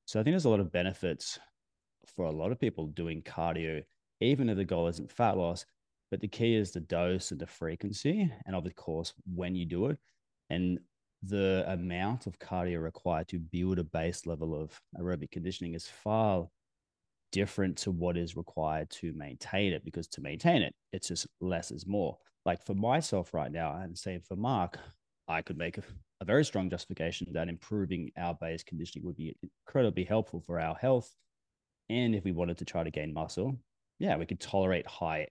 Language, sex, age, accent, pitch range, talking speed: English, male, 30-49, Australian, 85-105 Hz, 195 wpm